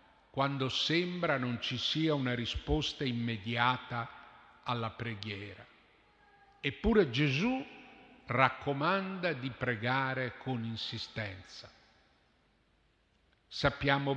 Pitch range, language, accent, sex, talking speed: 120-180 Hz, Italian, native, male, 75 wpm